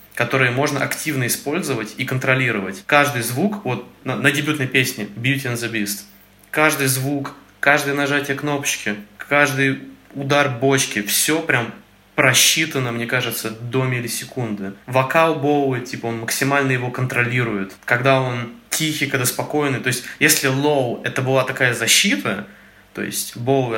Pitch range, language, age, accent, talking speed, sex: 115-140 Hz, Russian, 20-39, native, 140 wpm, male